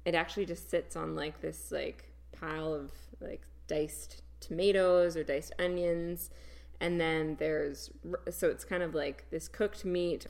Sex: female